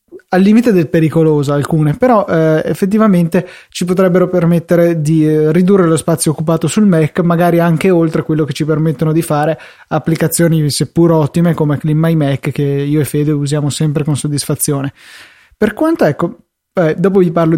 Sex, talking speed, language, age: male, 155 wpm, Italian, 20-39